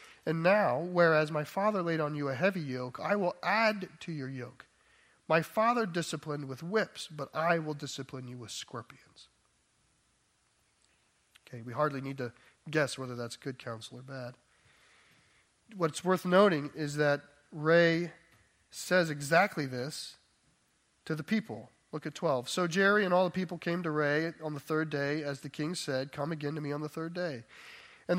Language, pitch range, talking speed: English, 140-185 Hz, 175 wpm